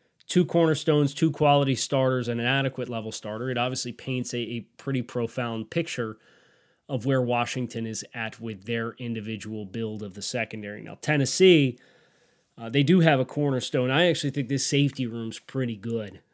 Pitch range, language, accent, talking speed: 115-135 Hz, English, American, 170 wpm